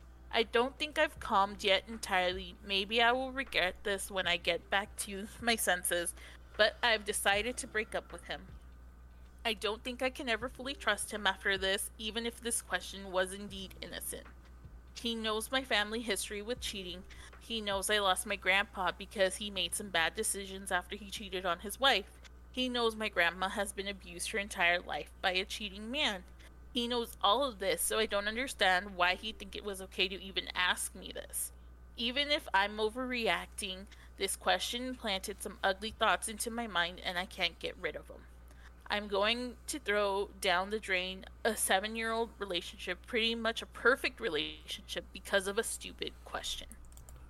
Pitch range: 185-225 Hz